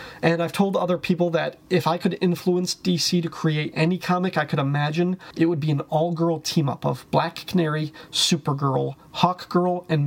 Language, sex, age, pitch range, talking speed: English, male, 30-49, 150-175 Hz, 180 wpm